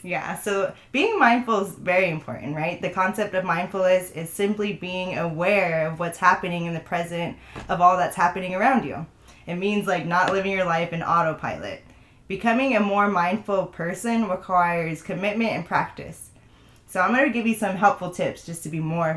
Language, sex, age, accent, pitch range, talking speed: English, female, 20-39, American, 165-200 Hz, 180 wpm